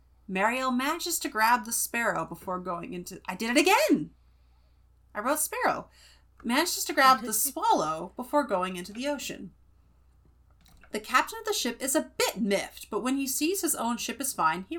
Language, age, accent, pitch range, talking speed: English, 30-49, American, 165-260 Hz, 185 wpm